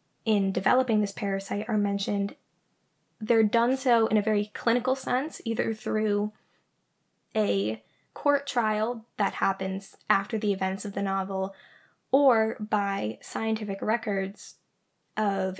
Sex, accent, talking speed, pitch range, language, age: female, American, 125 wpm, 195-225 Hz, English, 10-29